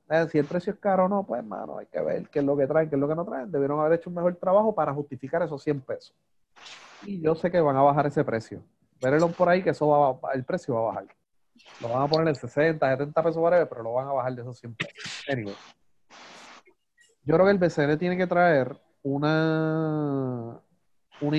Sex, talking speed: male, 240 wpm